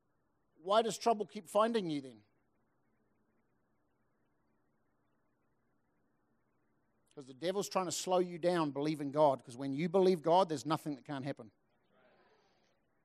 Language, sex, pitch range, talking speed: English, male, 150-200 Hz, 125 wpm